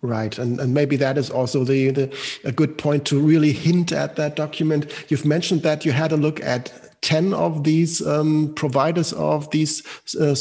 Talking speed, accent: 195 wpm, German